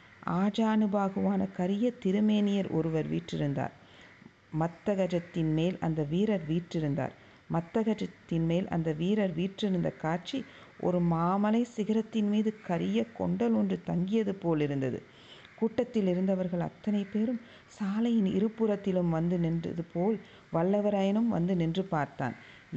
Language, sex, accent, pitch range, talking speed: Tamil, female, native, 170-210 Hz, 100 wpm